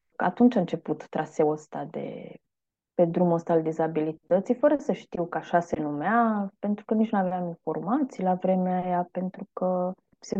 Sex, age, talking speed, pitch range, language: female, 20-39, 175 wpm, 185-255 Hz, Romanian